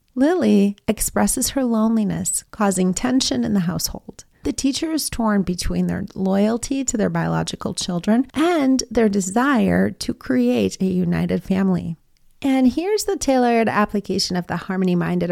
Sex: female